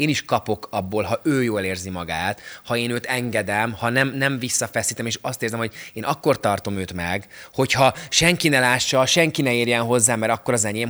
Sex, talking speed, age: male, 210 wpm, 20-39